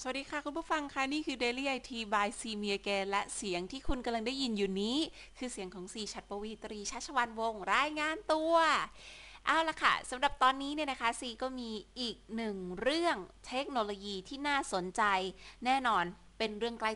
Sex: female